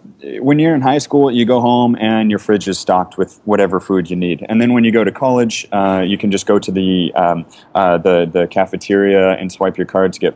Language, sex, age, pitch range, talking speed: English, male, 30-49, 95-115 Hz, 250 wpm